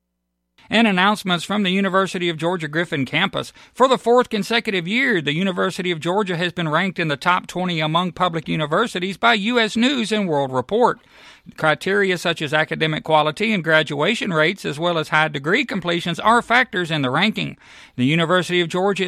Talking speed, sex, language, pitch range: 175 wpm, male, English, 165-215 Hz